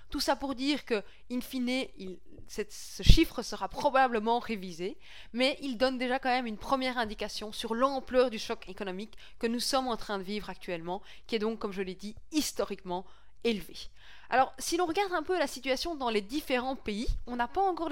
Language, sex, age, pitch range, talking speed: French, female, 20-39, 200-265 Hz, 200 wpm